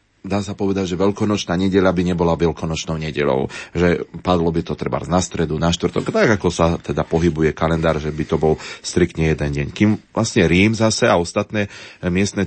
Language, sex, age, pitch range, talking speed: Slovak, male, 30-49, 80-95 Hz, 190 wpm